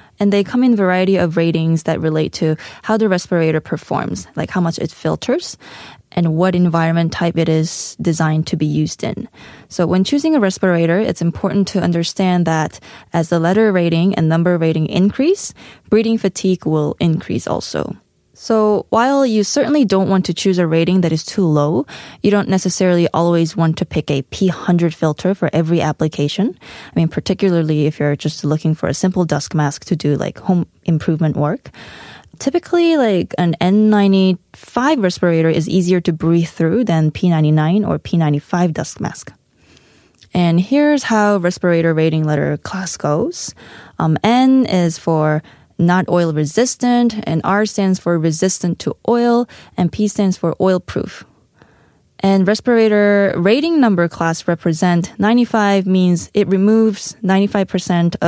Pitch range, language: 165-205 Hz, Korean